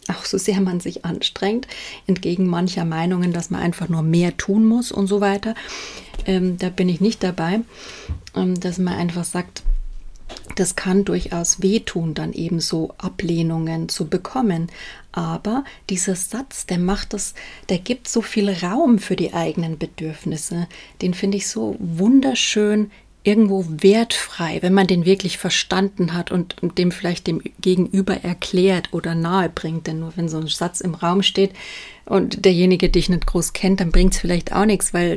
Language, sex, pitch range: German, female, 175-200 Hz